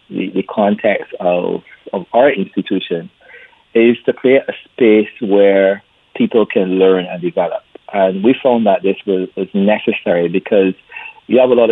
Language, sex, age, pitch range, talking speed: English, male, 30-49, 95-105 Hz, 155 wpm